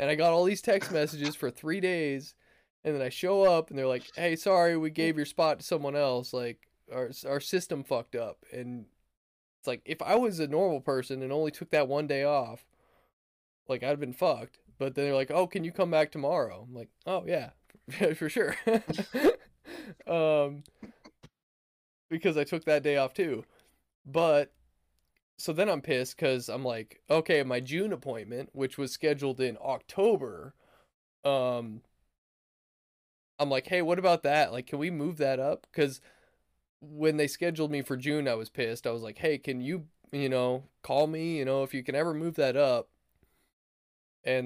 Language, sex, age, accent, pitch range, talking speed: English, male, 20-39, American, 125-160 Hz, 185 wpm